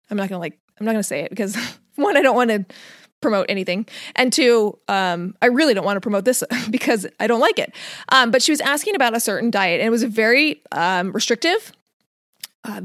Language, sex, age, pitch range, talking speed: English, female, 20-39, 200-255 Hz, 225 wpm